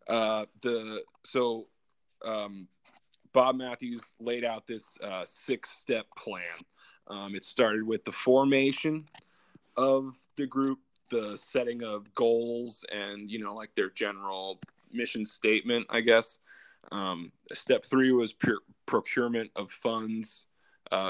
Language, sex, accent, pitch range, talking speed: English, male, American, 105-125 Hz, 130 wpm